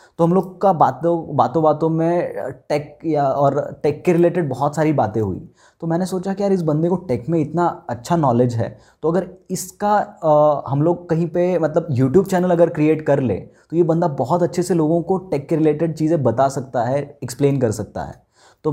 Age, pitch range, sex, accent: 20-39, 125-160 Hz, male, native